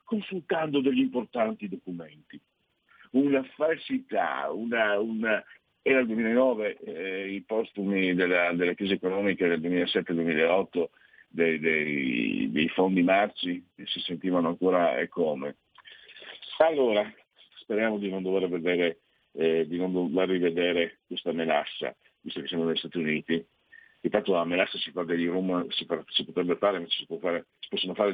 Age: 50-69